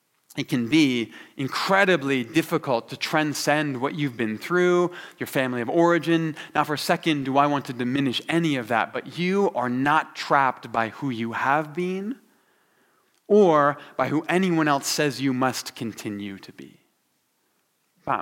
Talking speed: 160 wpm